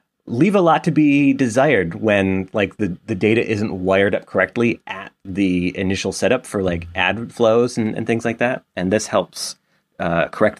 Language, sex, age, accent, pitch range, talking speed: English, male, 30-49, American, 95-140 Hz, 185 wpm